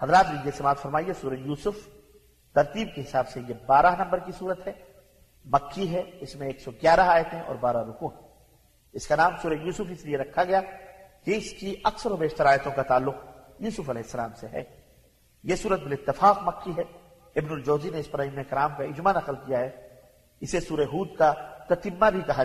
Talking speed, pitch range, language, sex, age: 175 wpm, 140-180 Hz, Arabic, male, 50-69